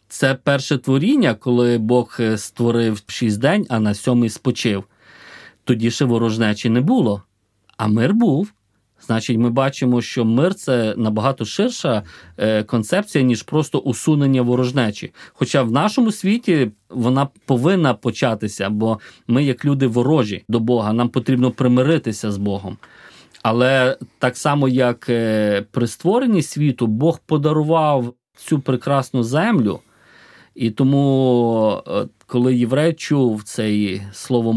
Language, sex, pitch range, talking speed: Ukrainian, male, 115-145 Hz, 125 wpm